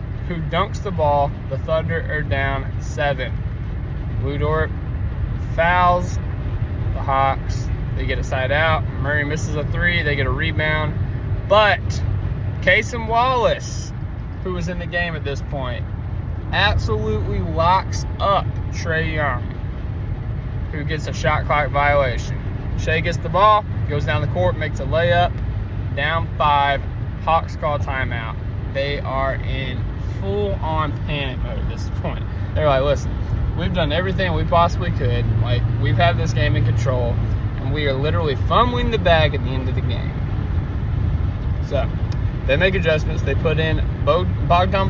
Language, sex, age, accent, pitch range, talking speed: English, male, 20-39, American, 95-120 Hz, 145 wpm